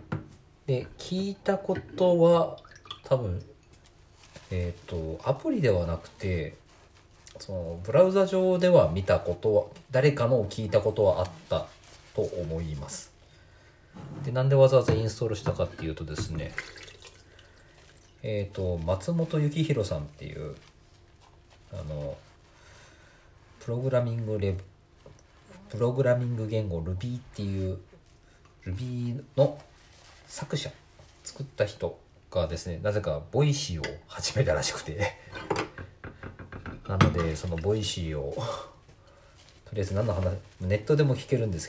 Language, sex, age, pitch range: Japanese, male, 40-59, 85-120 Hz